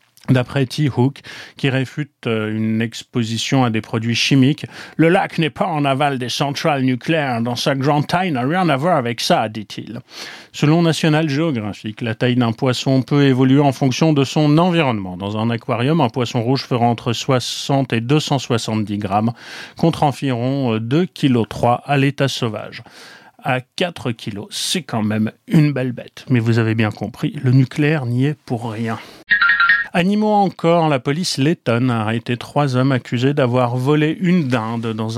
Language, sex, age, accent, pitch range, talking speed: French, male, 40-59, French, 115-145 Hz, 170 wpm